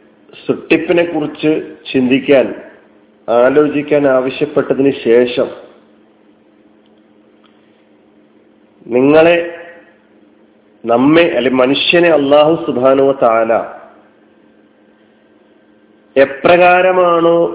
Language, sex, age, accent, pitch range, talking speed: Malayalam, male, 40-59, native, 105-165 Hz, 40 wpm